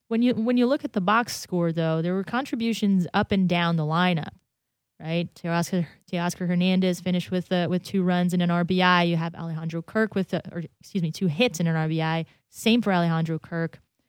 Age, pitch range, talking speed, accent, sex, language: 20-39, 170-205 Hz, 210 wpm, American, female, English